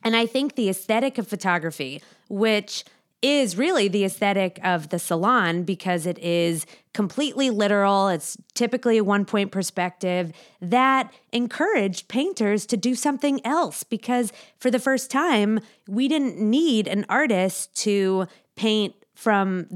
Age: 20-39